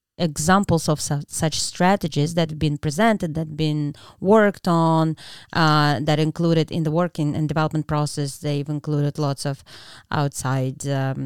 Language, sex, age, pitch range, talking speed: English, female, 30-49, 150-180 Hz, 145 wpm